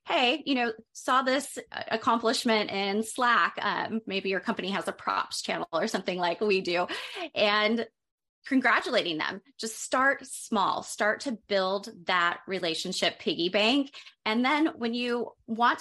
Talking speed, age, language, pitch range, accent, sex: 150 wpm, 20-39, English, 200-265 Hz, American, female